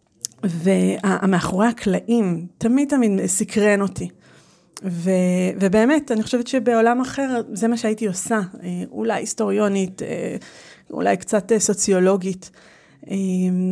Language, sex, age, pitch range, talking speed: Hebrew, female, 30-49, 180-220 Hz, 90 wpm